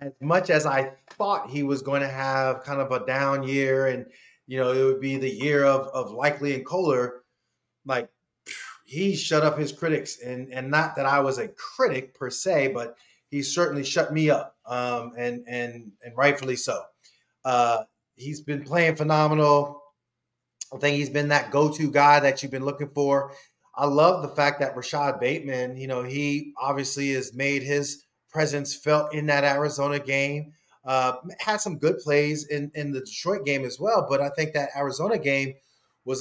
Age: 30-49